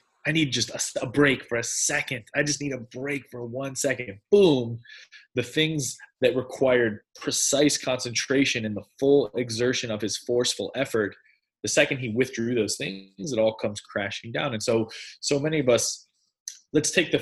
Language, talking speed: English, 180 wpm